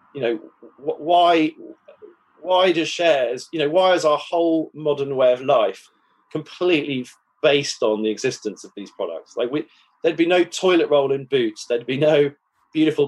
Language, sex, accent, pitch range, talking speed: English, male, British, 125-170 Hz, 170 wpm